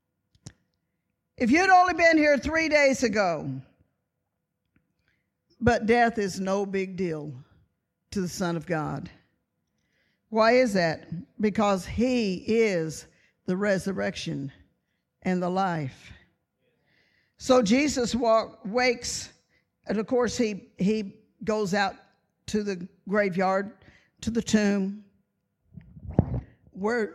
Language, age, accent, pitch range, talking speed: English, 50-69, American, 185-255 Hz, 105 wpm